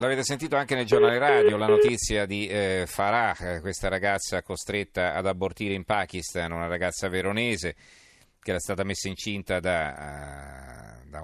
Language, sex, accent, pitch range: Italian, male, native, 90-110 Hz